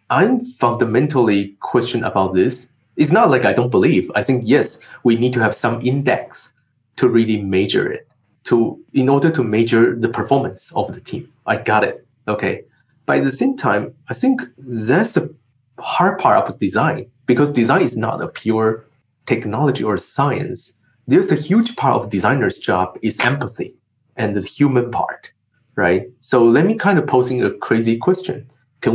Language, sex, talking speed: English, male, 170 wpm